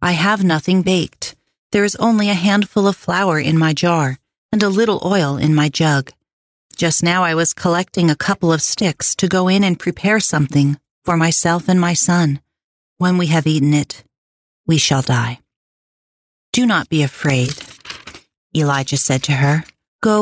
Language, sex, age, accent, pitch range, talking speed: English, female, 40-59, American, 140-185 Hz, 170 wpm